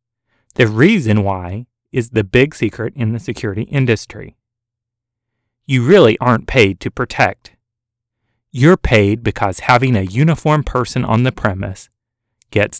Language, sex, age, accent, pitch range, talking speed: English, male, 30-49, American, 105-125 Hz, 130 wpm